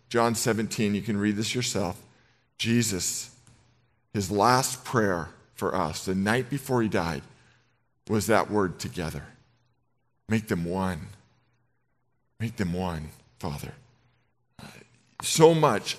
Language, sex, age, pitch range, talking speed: English, male, 50-69, 105-140 Hz, 115 wpm